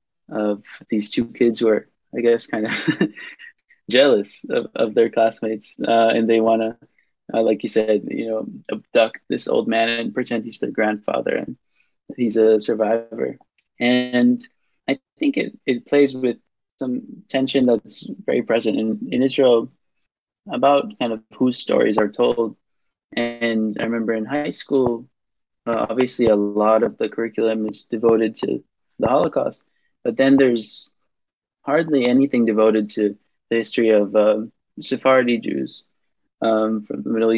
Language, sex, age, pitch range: English, male, 20-39, 110-130 Hz